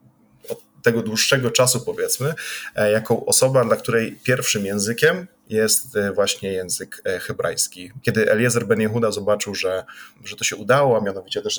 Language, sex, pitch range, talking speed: Polish, male, 100-125 Hz, 140 wpm